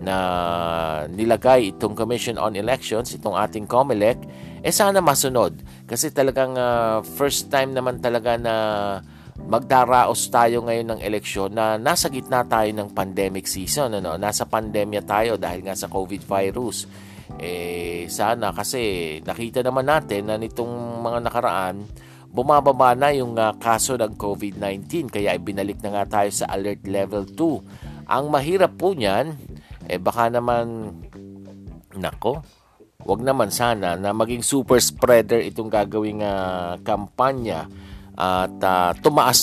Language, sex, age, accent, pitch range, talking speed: Filipino, male, 50-69, native, 100-120 Hz, 140 wpm